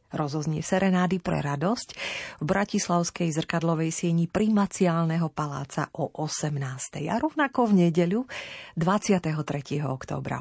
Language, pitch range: Slovak, 150-200 Hz